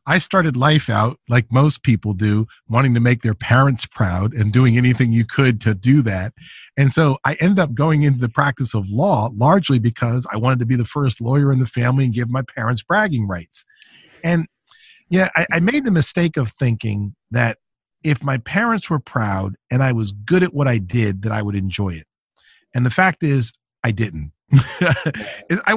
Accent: American